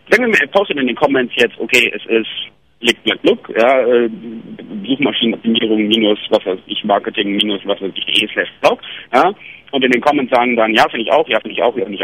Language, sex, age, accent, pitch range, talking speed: English, male, 60-79, German, 115-180 Hz, 225 wpm